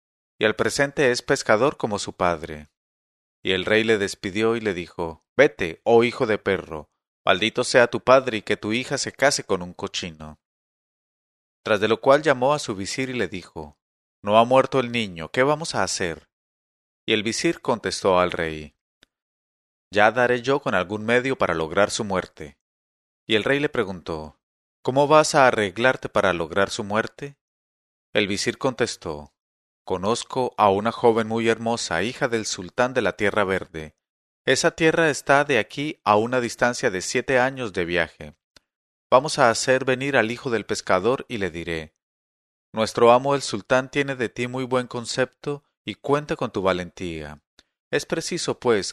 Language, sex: English, male